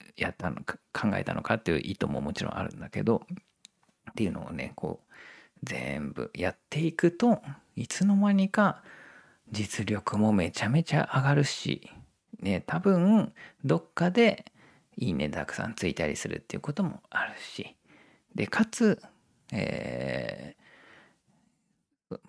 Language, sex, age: Japanese, male, 40-59